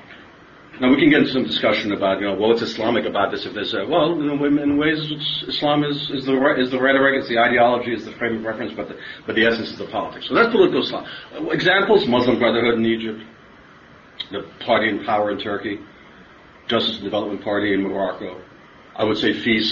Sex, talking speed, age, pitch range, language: male, 225 wpm, 40-59, 110-145 Hz, English